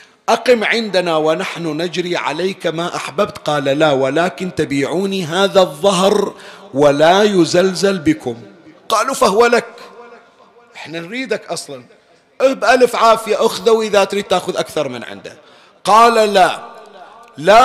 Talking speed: 115 wpm